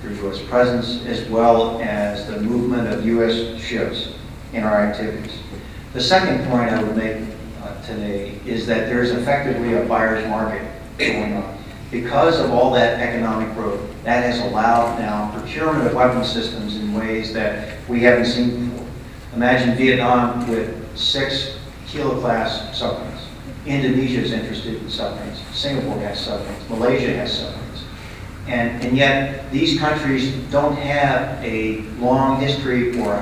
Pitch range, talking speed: 110-125 Hz, 145 wpm